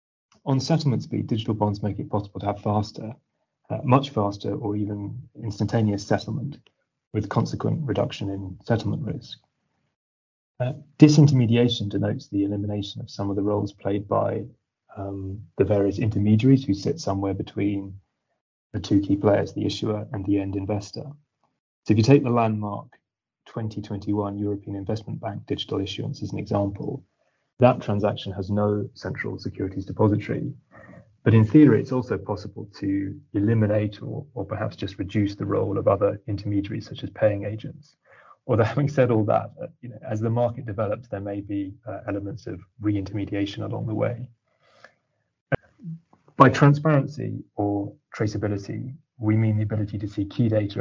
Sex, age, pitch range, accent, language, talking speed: male, 30-49, 100-125 Hz, British, English, 150 wpm